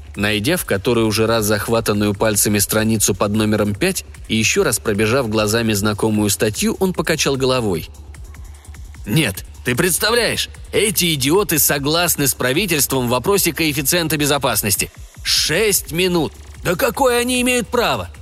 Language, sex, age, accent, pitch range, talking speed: Russian, male, 30-49, native, 110-180 Hz, 130 wpm